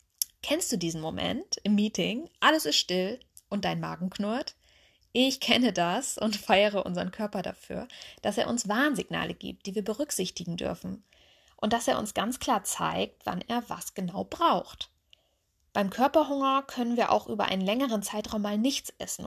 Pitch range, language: 190-240 Hz, German